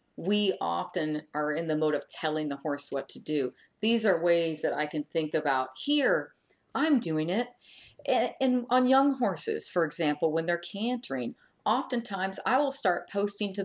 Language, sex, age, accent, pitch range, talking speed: English, female, 40-59, American, 170-260 Hz, 175 wpm